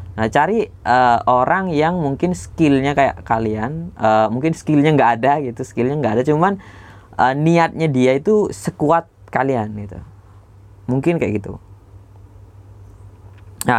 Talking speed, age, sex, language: 130 wpm, 20-39, female, Indonesian